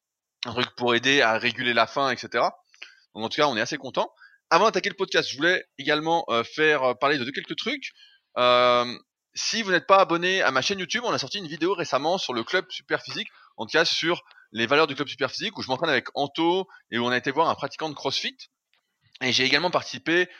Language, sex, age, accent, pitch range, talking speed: French, male, 20-39, French, 125-180 Hz, 230 wpm